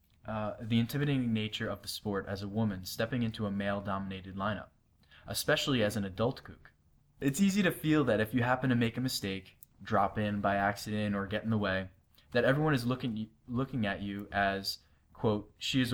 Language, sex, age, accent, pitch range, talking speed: English, male, 20-39, American, 100-120 Hz, 195 wpm